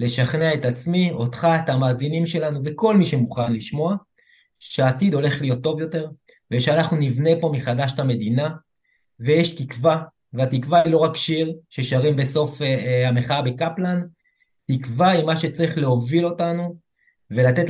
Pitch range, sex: 125-165 Hz, male